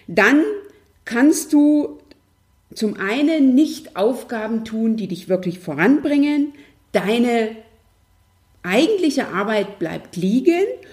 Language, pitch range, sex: German, 185-260 Hz, female